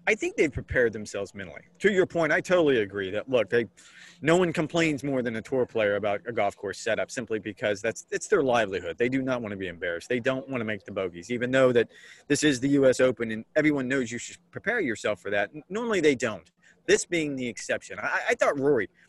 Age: 30-49